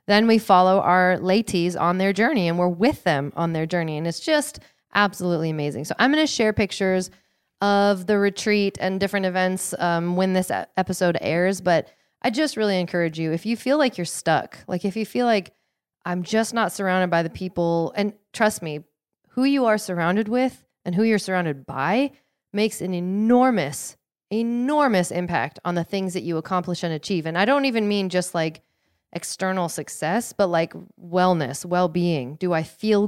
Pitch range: 175-220 Hz